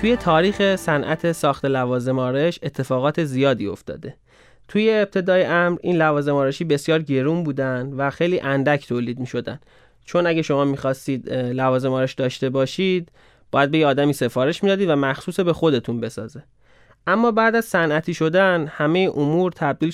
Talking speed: 155 wpm